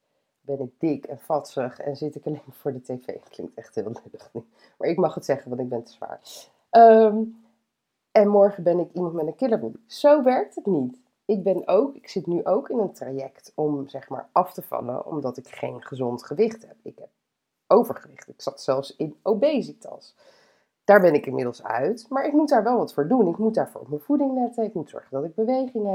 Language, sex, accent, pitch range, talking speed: Dutch, female, Dutch, 150-225 Hz, 220 wpm